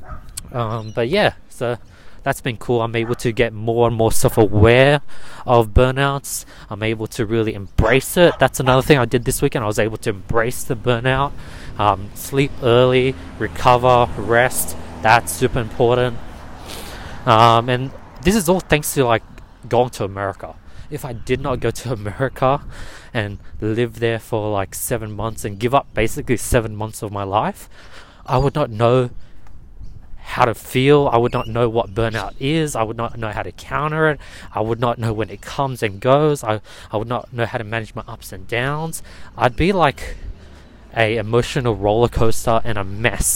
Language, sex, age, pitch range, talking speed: English, male, 20-39, 105-125 Hz, 185 wpm